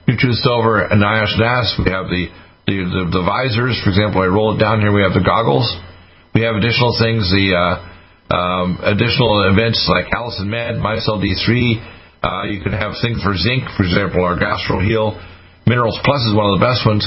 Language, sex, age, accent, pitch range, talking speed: English, male, 50-69, American, 95-115 Hz, 195 wpm